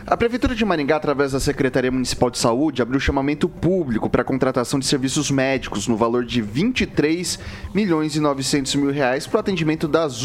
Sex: male